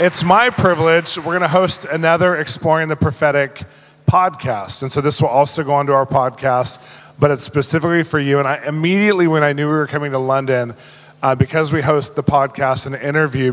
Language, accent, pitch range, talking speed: English, American, 130-160 Hz, 205 wpm